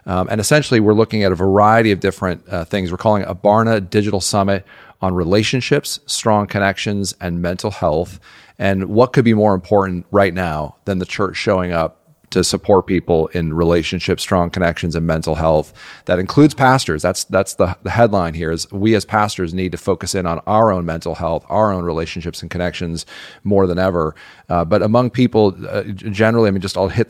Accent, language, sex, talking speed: American, English, male, 200 wpm